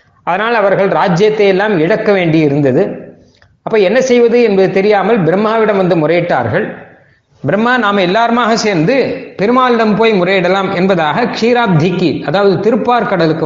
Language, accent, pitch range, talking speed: Tamil, native, 155-215 Hz, 120 wpm